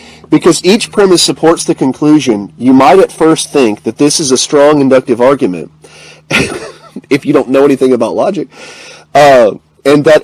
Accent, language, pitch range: American, English, 135-185 Hz